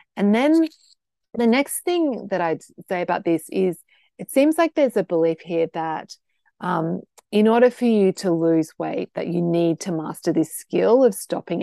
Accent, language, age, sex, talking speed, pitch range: Australian, English, 30-49, female, 185 wpm, 165-235 Hz